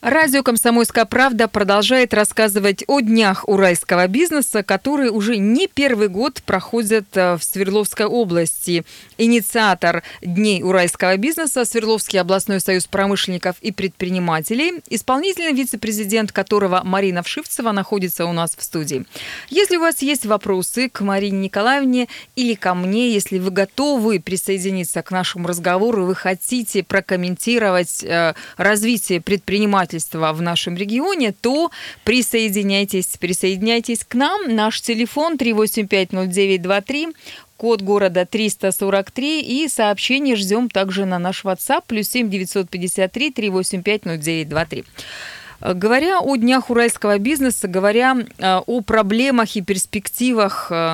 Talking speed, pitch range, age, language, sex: 115 wpm, 185-235 Hz, 20-39, Russian, female